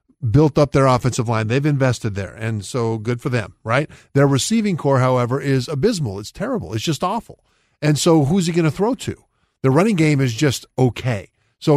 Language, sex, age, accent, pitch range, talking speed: English, male, 50-69, American, 125-155 Hz, 205 wpm